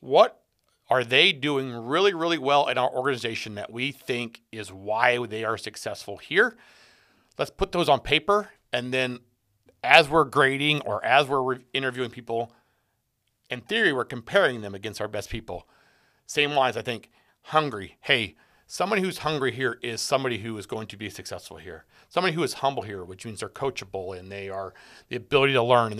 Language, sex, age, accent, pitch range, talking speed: English, male, 40-59, American, 110-135 Hz, 180 wpm